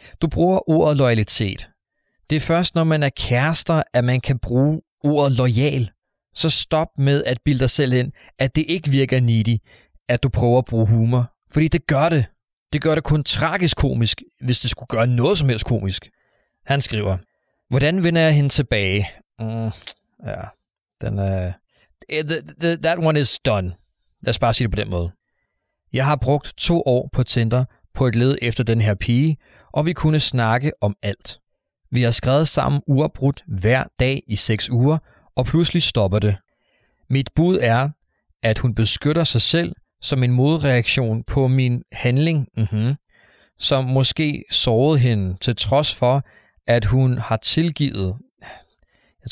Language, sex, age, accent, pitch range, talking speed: Danish, male, 30-49, native, 115-145 Hz, 170 wpm